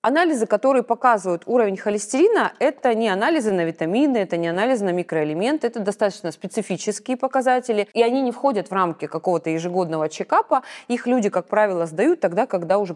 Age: 20-39